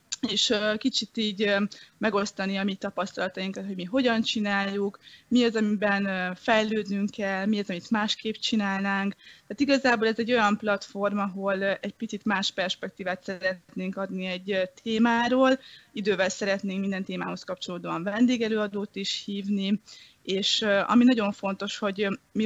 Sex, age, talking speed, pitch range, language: female, 20-39, 135 wpm, 190-220 Hz, Hungarian